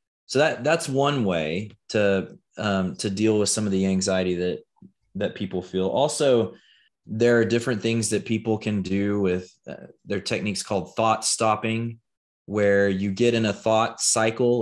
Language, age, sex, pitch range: English, 20-39, male, 95-120 Hz